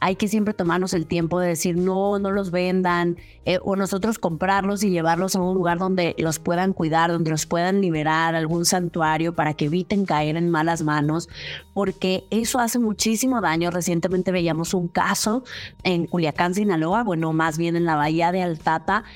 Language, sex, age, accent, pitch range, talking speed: Spanish, female, 30-49, Mexican, 170-210 Hz, 180 wpm